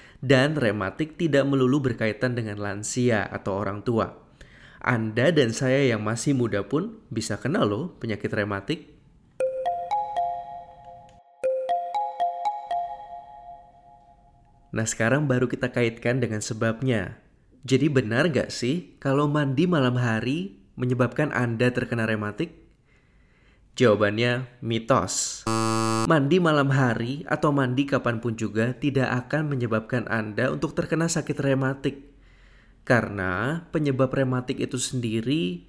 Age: 20-39